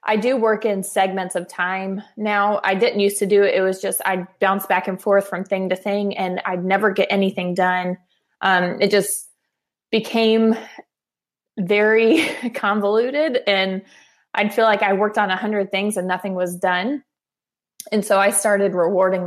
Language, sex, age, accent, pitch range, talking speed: English, female, 20-39, American, 185-210 Hz, 175 wpm